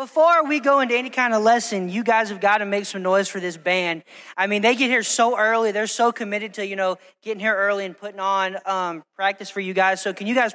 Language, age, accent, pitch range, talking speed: English, 20-39, American, 195-235 Hz, 265 wpm